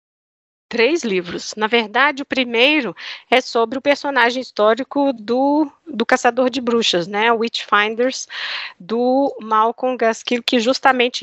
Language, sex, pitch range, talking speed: Portuguese, female, 225-275 Hz, 125 wpm